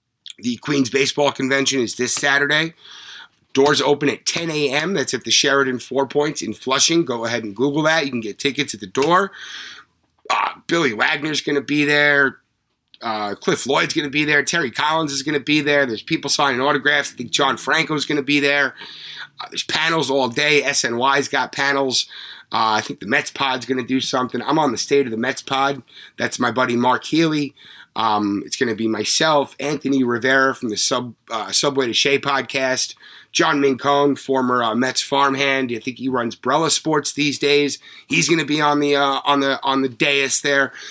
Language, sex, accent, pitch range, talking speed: English, male, American, 125-145 Hz, 200 wpm